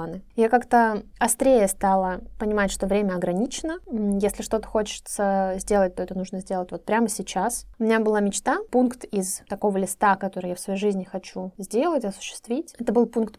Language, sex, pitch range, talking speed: Russian, female, 195-235 Hz, 170 wpm